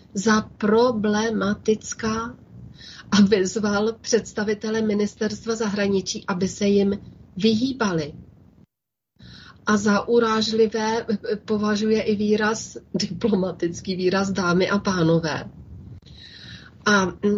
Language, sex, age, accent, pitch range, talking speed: Czech, female, 30-49, native, 190-215 Hz, 80 wpm